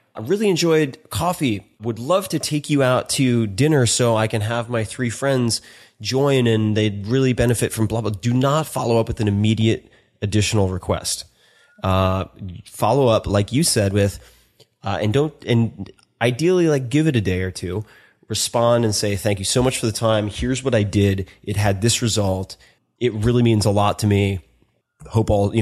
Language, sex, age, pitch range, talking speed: English, male, 20-39, 100-125 Hz, 195 wpm